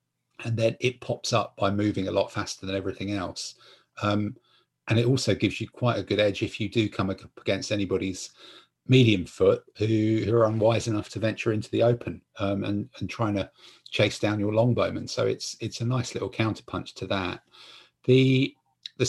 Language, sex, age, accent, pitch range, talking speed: English, male, 50-69, British, 100-115 Hz, 195 wpm